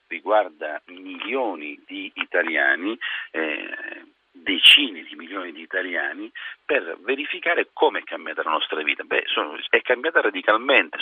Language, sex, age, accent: Italian, male, 40-59, native